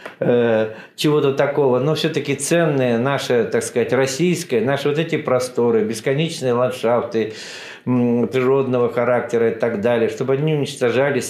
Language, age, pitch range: Russian, 50-69, 125-155 Hz